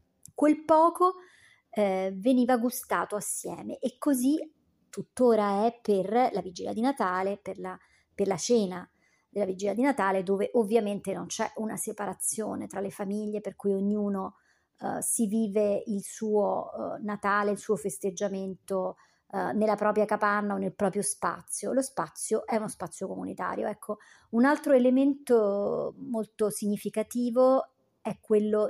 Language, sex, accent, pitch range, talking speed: Italian, male, native, 195-225 Hz, 145 wpm